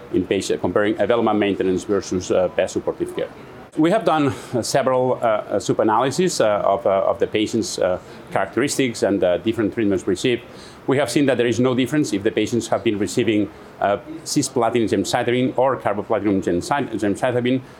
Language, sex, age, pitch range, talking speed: English, male, 30-49, 110-135 Hz, 170 wpm